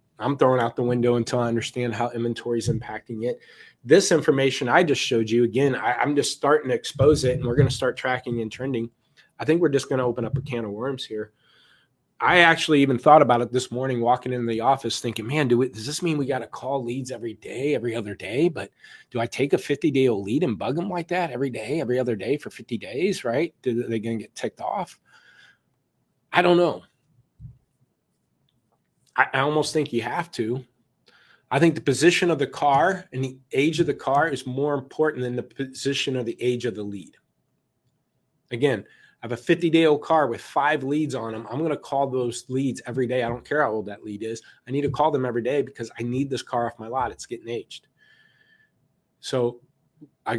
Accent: American